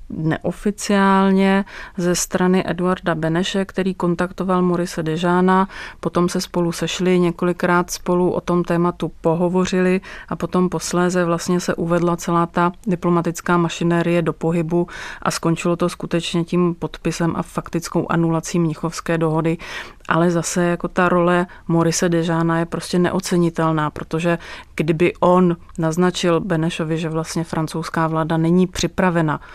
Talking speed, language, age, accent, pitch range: 130 wpm, Czech, 30-49, native, 165-180 Hz